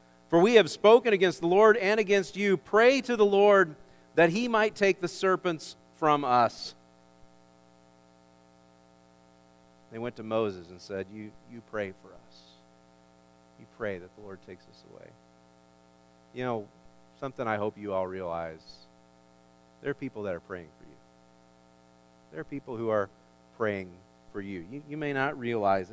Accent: American